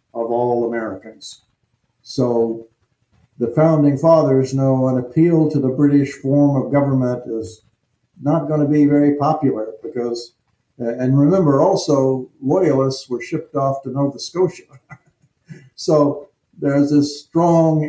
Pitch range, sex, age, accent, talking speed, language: 115-145 Hz, male, 60-79, American, 125 wpm, English